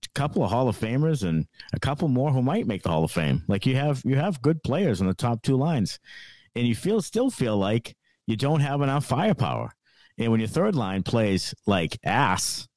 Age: 50-69